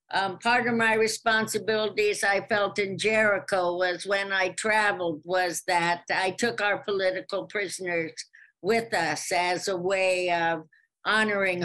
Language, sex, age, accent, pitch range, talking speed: English, female, 60-79, American, 180-205 Hz, 140 wpm